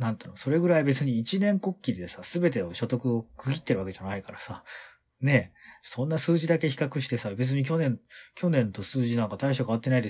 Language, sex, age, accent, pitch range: Japanese, male, 30-49, native, 100-140 Hz